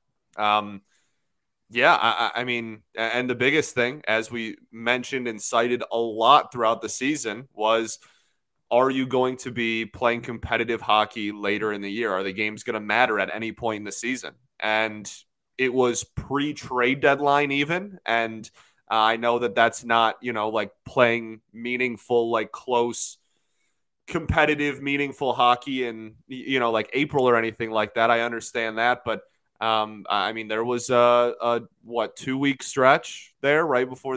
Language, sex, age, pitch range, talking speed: English, male, 20-39, 110-125 Hz, 165 wpm